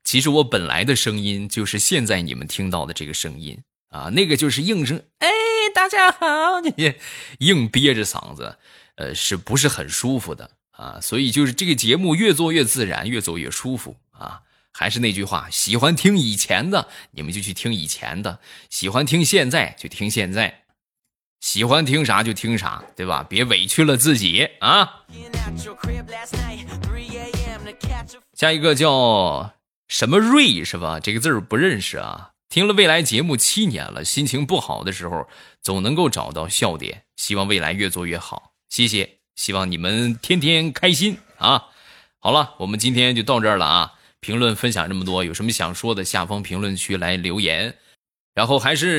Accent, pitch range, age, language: native, 95-155 Hz, 20-39, Chinese